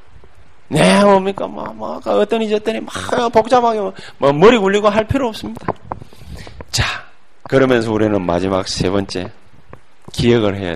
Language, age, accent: Korean, 40-59, native